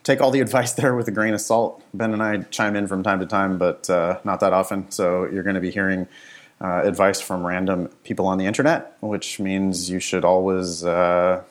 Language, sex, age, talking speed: English, male, 30-49, 230 wpm